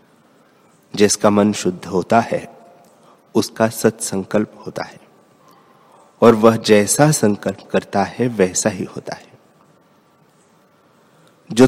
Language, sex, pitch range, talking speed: Hindi, male, 105-125 Hz, 105 wpm